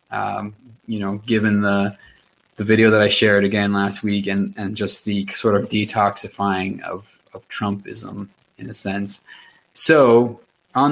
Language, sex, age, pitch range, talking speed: English, male, 20-39, 100-120 Hz, 155 wpm